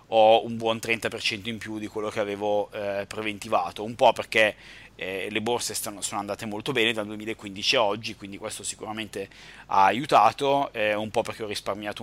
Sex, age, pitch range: male, 30-49, 110-125 Hz